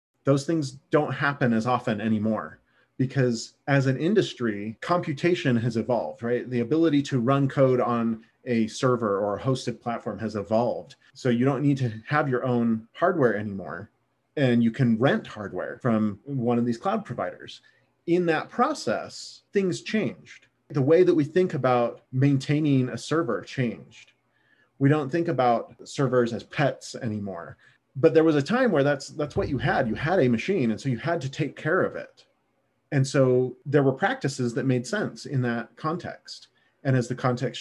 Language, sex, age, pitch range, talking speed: English, male, 30-49, 115-140 Hz, 180 wpm